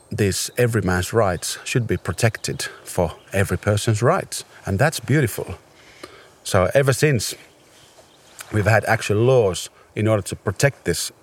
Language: English